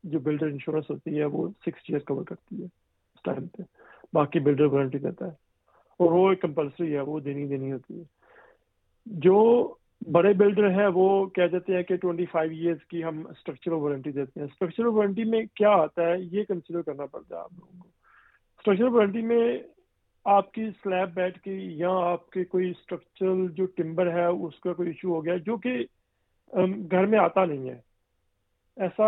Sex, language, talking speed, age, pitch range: male, Urdu, 185 wpm, 50-69, 170-200 Hz